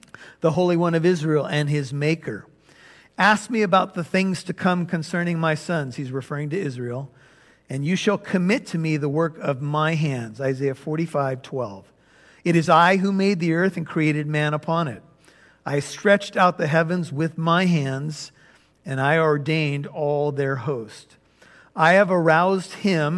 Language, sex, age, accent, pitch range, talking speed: English, male, 50-69, American, 145-180 Hz, 170 wpm